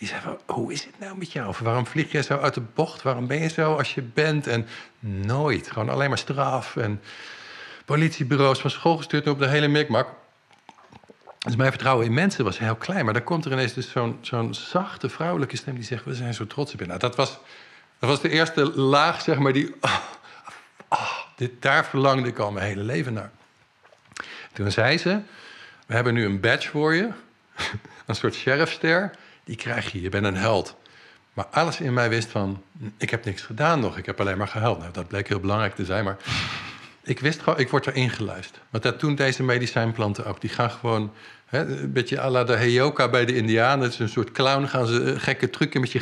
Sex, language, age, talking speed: male, English, 50-69, 220 wpm